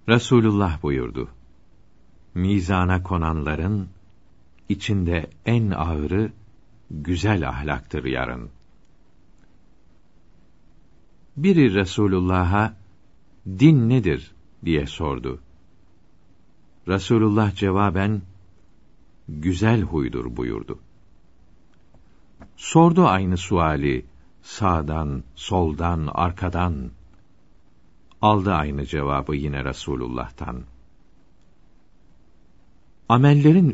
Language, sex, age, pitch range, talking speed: Turkish, male, 50-69, 80-100 Hz, 60 wpm